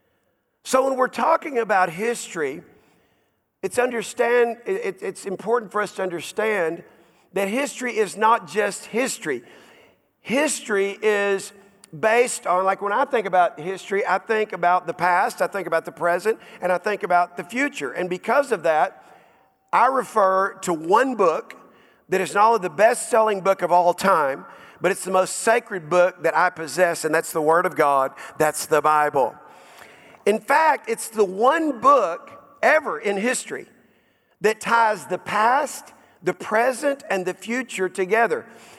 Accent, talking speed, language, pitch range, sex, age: American, 160 wpm, English, 180-245 Hz, male, 50-69